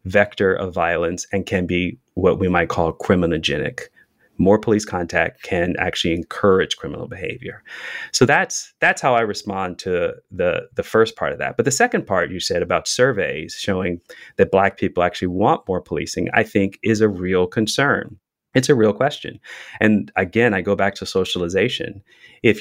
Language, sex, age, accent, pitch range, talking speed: English, male, 30-49, American, 90-105 Hz, 175 wpm